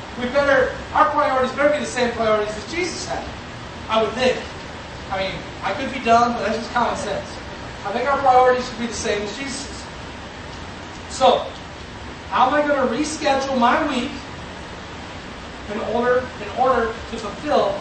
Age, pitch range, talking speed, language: 30-49, 220-270 Hz, 170 wpm, English